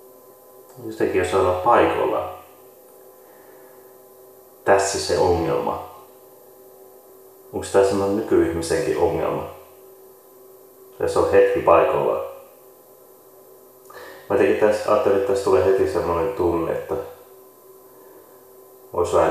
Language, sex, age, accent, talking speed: Finnish, male, 30-49, native, 95 wpm